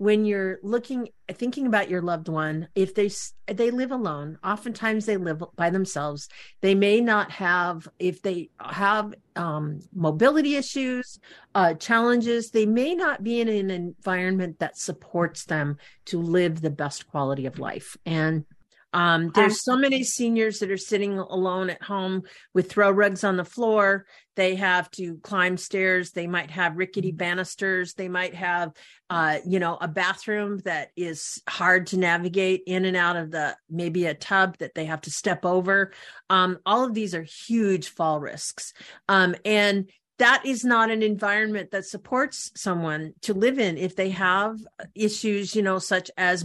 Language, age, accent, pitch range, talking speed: English, 50-69, American, 175-215 Hz, 170 wpm